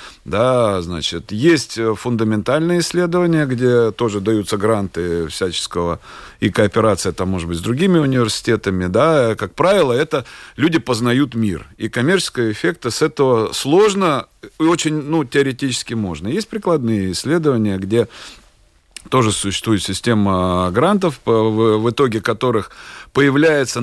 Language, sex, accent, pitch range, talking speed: Russian, male, native, 105-145 Hz, 120 wpm